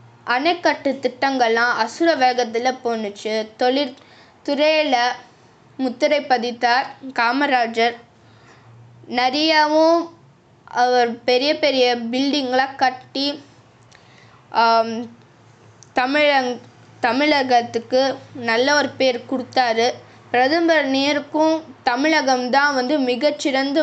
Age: 20-39